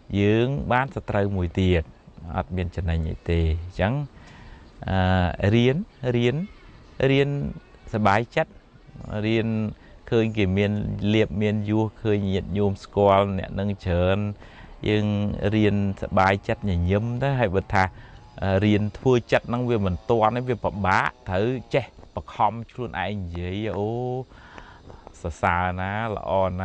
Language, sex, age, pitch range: English, male, 20-39, 90-110 Hz